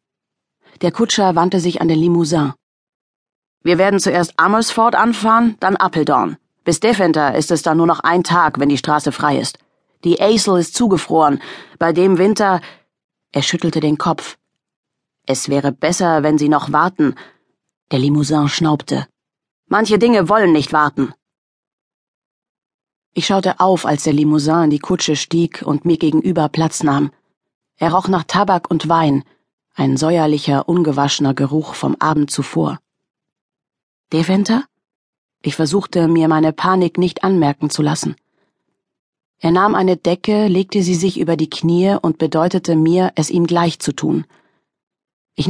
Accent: German